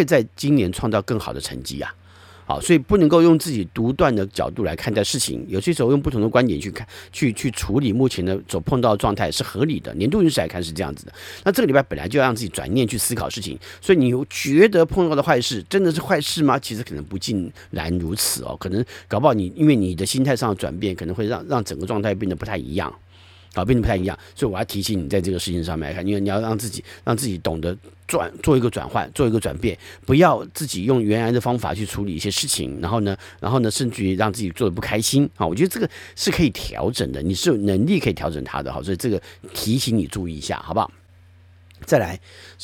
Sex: male